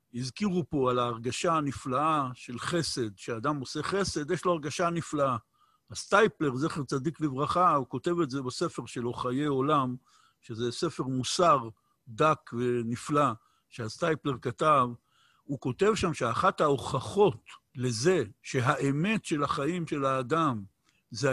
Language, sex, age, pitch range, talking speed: Hebrew, male, 60-79, 130-180 Hz, 125 wpm